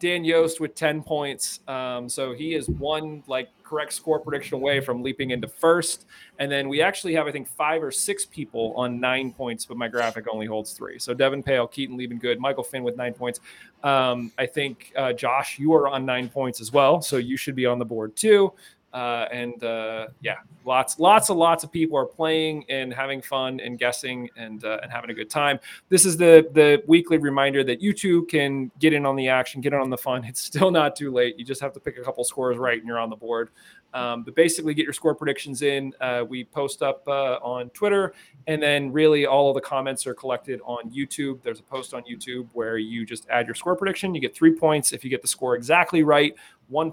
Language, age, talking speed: English, 30-49, 235 wpm